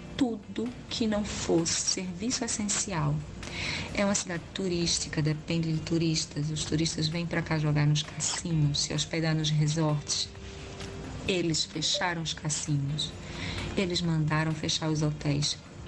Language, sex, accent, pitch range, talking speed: Portuguese, female, Brazilian, 150-185 Hz, 130 wpm